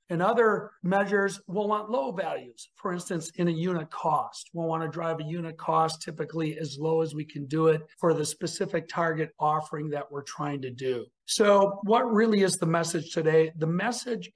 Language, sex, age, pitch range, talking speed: English, male, 50-69, 155-195 Hz, 195 wpm